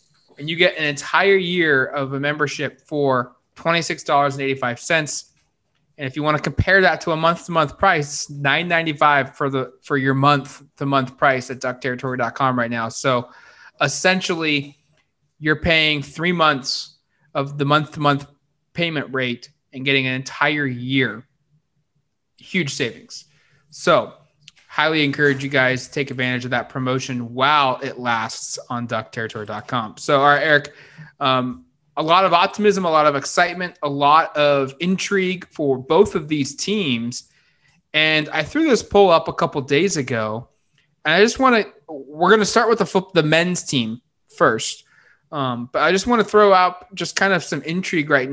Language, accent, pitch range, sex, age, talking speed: English, American, 135-160 Hz, male, 20-39, 175 wpm